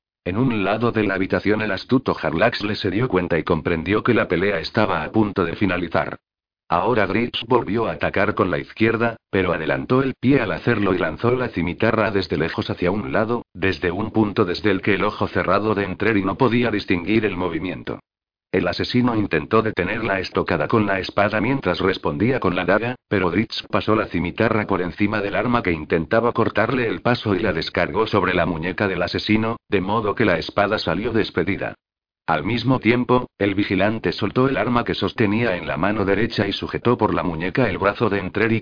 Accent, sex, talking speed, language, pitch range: Spanish, male, 195 wpm, Spanish, 95-115 Hz